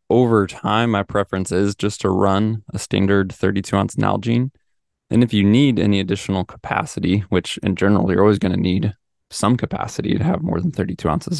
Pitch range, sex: 95-115 Hz, male